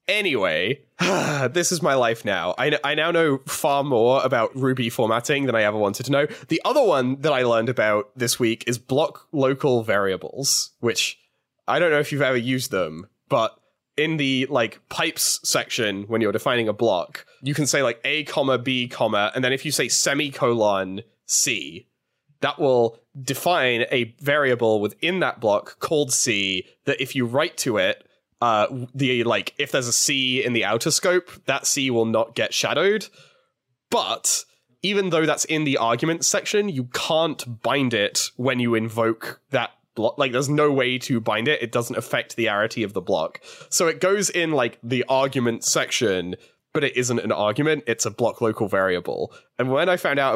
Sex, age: male, 20-39